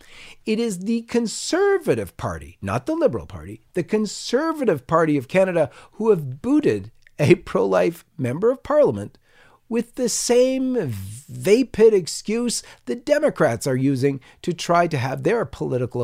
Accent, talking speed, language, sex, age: American, 140 wpm, English, male, 40-59